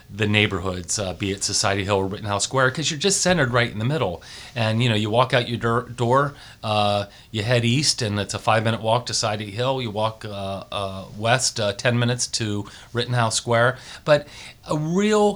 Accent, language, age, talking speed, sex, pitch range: American, English, 30-49, 205 wpm, male, 105-125 Hz